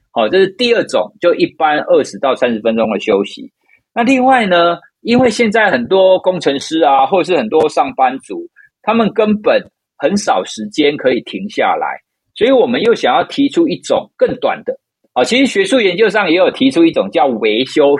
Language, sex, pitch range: Chinese, male, 175-270 Hz